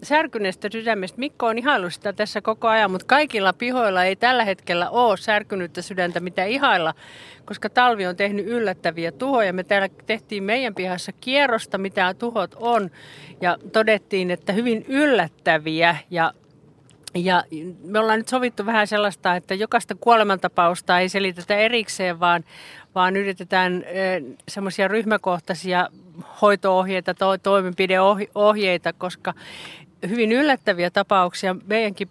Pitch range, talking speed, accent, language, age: 180-215 Hz, 125 wpm, native, Finnish, 40-59